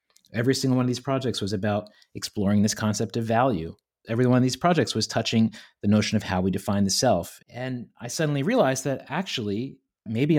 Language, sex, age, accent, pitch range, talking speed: English, male, 30-49, American, 105-135 Hz, 200 wpm